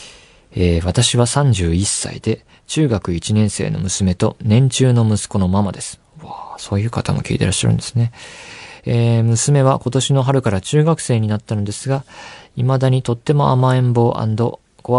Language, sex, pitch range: Japanese, male, 100-130 Hz